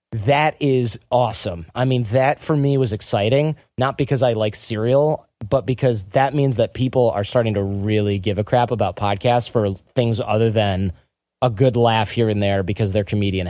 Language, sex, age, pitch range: English, male, 30-49, 105-135 Hz